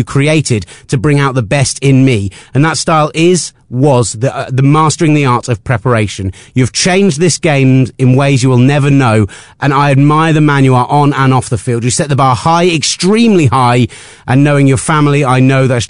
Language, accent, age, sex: English, British, 30-49, male